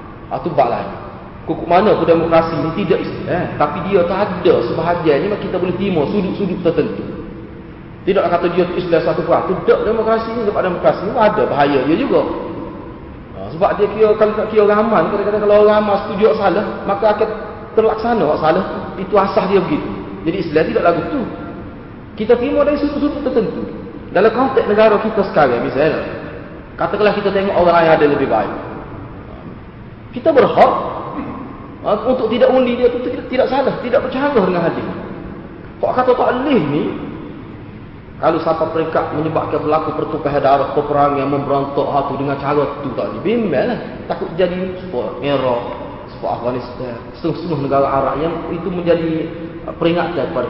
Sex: male